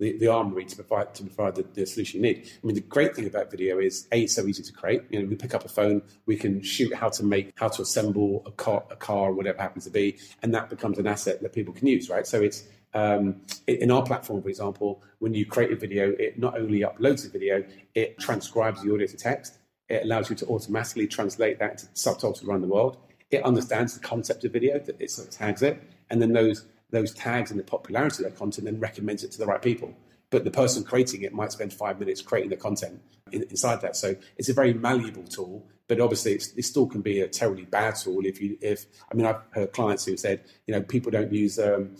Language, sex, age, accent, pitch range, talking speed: English, male, 40-59, British, 105-125 Hz, 245 wpm